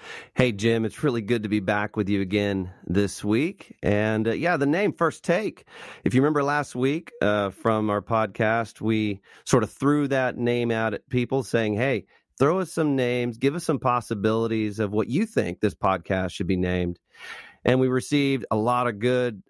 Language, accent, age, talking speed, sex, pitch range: English, American, 40-59, 195 wpm, male, 105-135 Hz